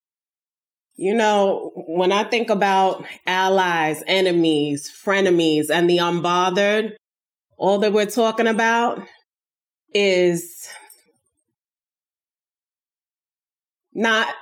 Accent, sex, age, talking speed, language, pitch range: American, female, 20-39, 80 wpm, English, 185-225 Hz